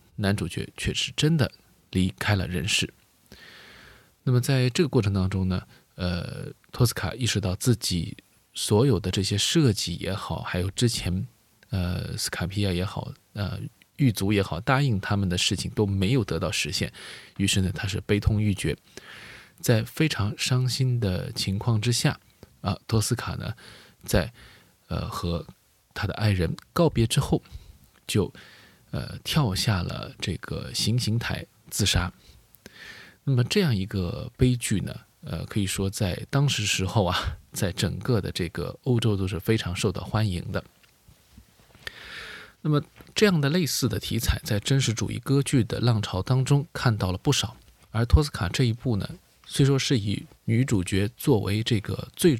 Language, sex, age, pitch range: Chinese, male, 20-39, 95-125 Hz